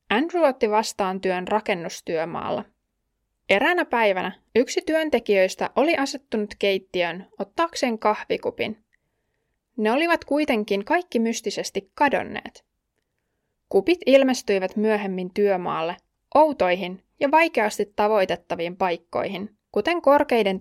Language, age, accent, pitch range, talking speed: Finnish, 20-39, native, 195-275 Hz, 90 wpm